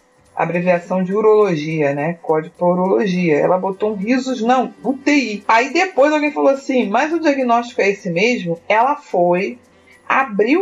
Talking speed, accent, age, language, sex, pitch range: 155 wpm, Brazilian, 40-59, Portuguese, female, 180-255 Hz